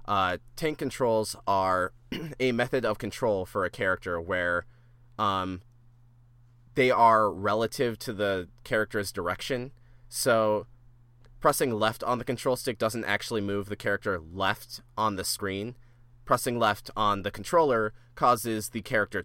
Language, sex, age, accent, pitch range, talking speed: English, male, 30-49, American, 105-120 Hz, 135 wpm